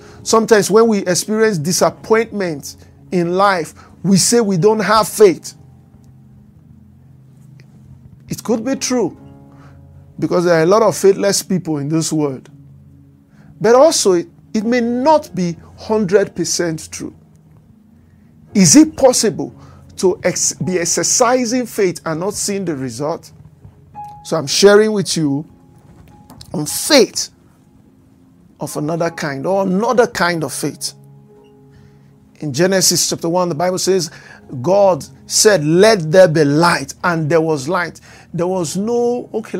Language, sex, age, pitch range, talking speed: English, male, 50-69, 155-205 Hz, 130 wpm